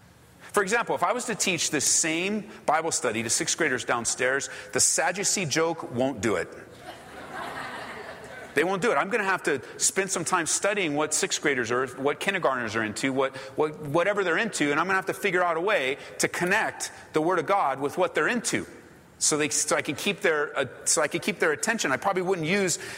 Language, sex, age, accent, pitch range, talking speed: English, male, 40-59, American, 120-195 Hz, 220 wpm